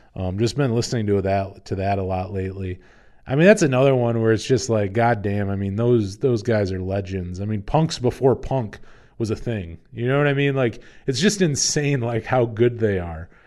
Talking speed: 225 wpm